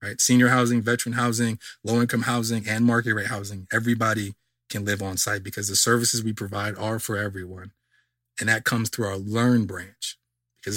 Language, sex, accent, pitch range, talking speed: English, male, American, 115-130 Hz, 180 wpm